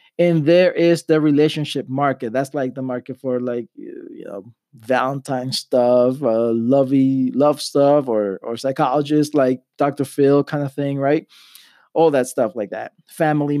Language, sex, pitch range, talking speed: English, male, 130-170 Hz, 160 wpm